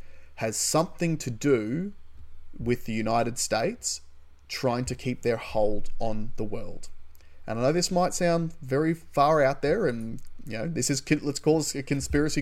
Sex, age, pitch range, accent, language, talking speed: male, 30-49, 105-140 Hz, Australian, English, 175 wpm